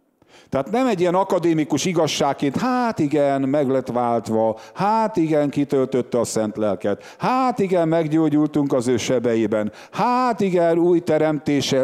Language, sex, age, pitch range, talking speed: English, male, 50-69, 135-185 Hz, 135 wpm